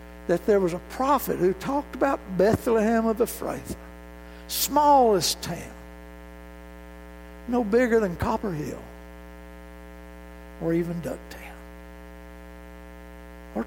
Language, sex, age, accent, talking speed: English, male, 60-79, American, 100 wpm